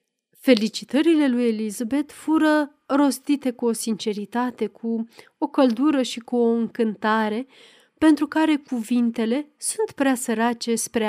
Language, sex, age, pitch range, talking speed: Romanian, female, 30-49, 220-290 Hz, 120 wpm